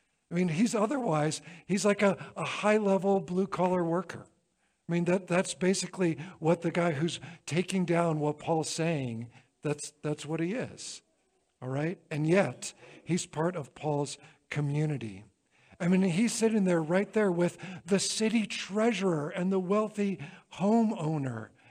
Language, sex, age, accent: English, male, 50-69, American